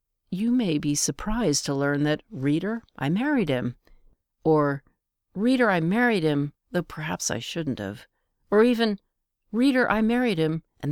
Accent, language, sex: American, English, female